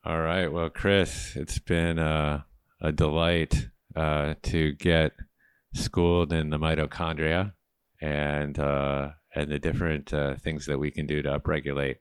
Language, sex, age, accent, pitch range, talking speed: English, male, 30-49, American, 70-80 Hz, 145 wpm